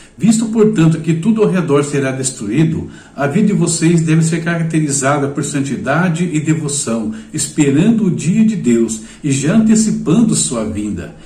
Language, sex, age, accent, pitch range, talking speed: Portuguese, male, 60-79, Brazilian, 125-175 Hz, 155 wpm